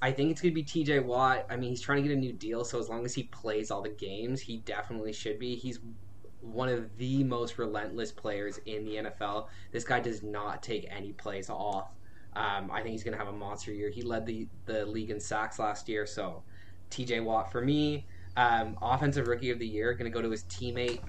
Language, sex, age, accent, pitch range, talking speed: English, male, 20-39, American, 105-130 Hz, 240 wpm